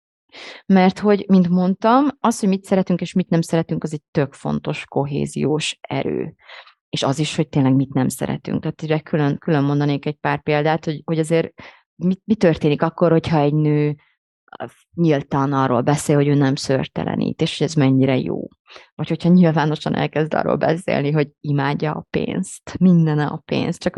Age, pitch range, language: 30-49, 145-195 Hz, Hungarian